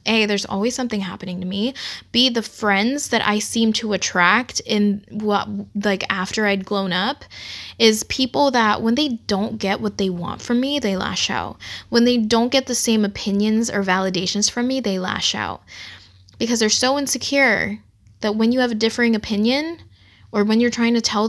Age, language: 10-29, English